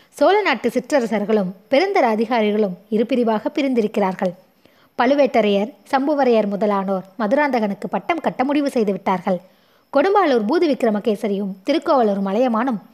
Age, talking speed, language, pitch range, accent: 20-39, 95 wpm, Tamil, 205-265 Hz, native